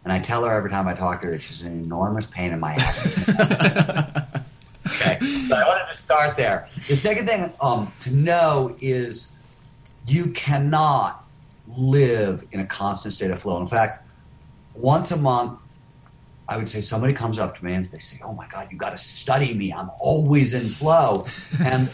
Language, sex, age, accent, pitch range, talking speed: English, male, 40-59, American, 105-145 Hz, 190 wpm